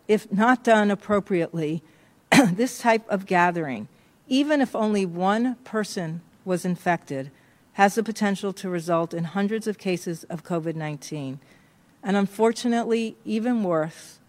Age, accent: 50-69, American